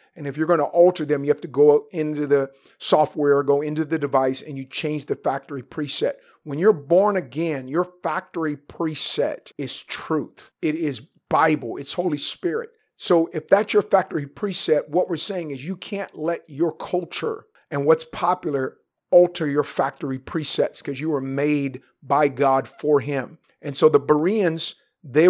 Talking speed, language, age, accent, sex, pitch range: 175 wpm, English, 40-59, American, male, 140-175 Hz